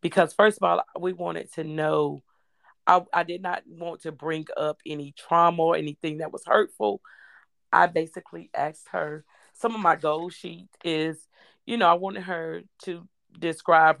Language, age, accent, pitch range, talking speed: English, 40-59, American, 155-185 Hz, 170 wpm